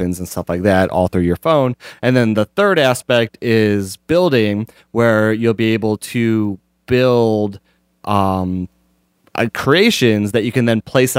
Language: English